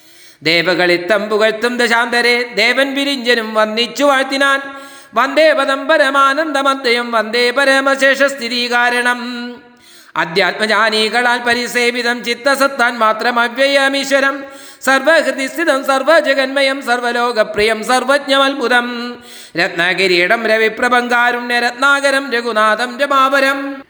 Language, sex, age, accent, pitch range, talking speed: Malayalam, male, 40-59, native, 240-275 Hz, 60 wpm